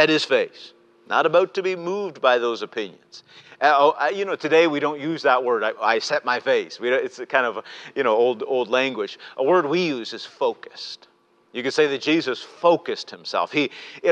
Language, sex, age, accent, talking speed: English, male, 50-69, American, 220 wpm